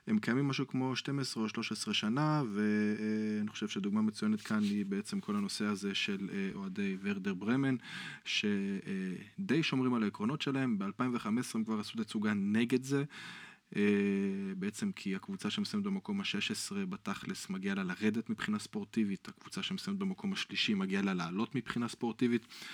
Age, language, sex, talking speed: 20-39, Hebrew, male, 145 wpm